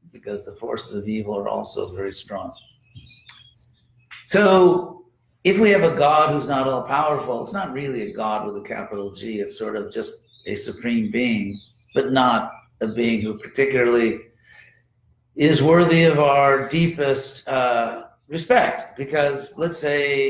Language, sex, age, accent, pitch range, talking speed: English, male, 60-79, American, 115-155 Hz, 150 wpm